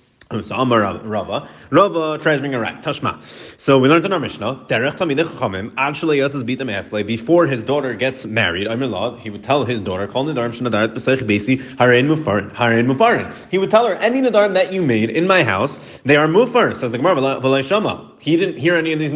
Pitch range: 125-190 Hz